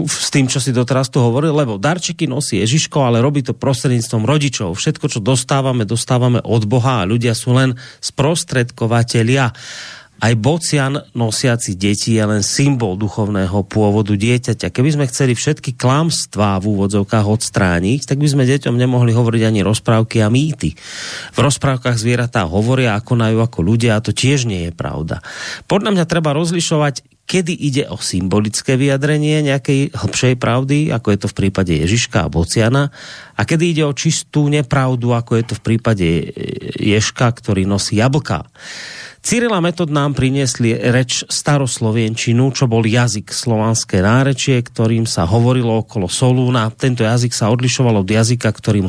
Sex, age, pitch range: male, 30-49, 110-140 Hz